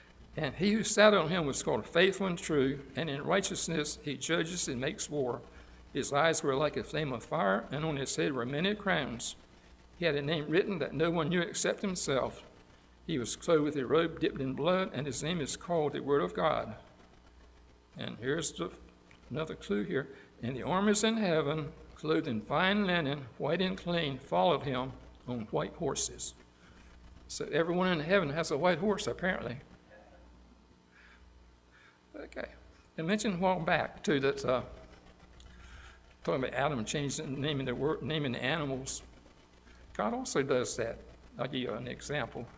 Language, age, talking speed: English, 60-79, 170 wpm